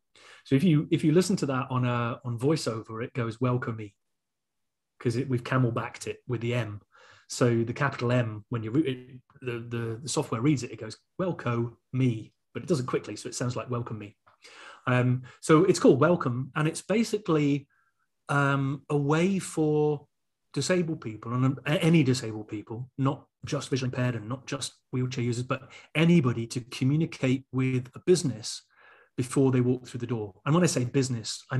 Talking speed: 185 wpm